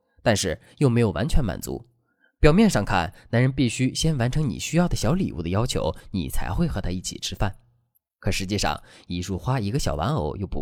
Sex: male